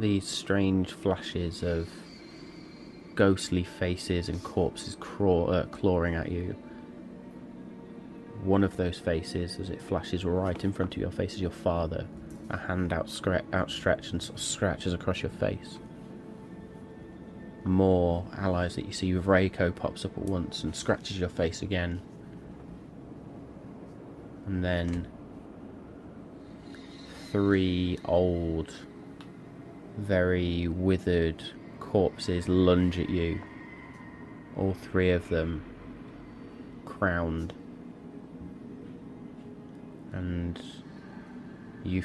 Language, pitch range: English, 85-95 Hz